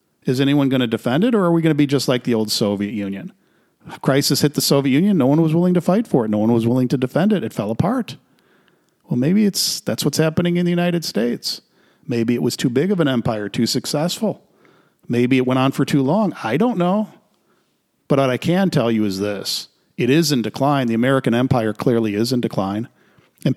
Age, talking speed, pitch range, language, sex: 40-59, 235 wpm, 115-150 Hz, English, male